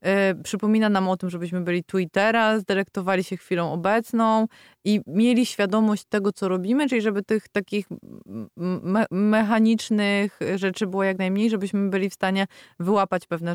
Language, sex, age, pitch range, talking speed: Polish, female, 20-39, 180-215 Hz, 155 wpm